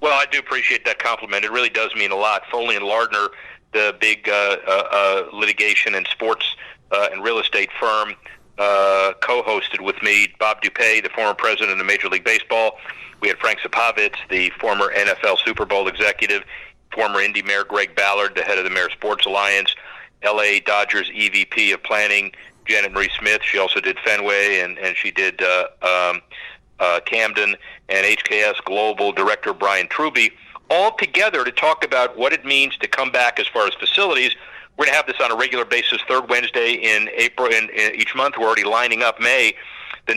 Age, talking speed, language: 40-59, 190 wpm, English